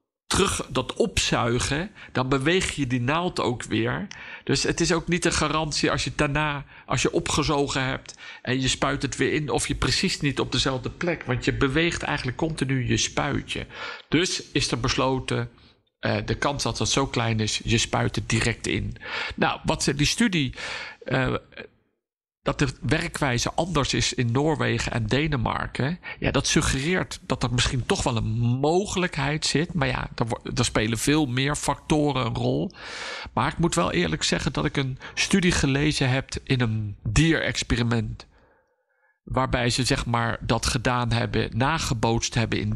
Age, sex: 50-69, male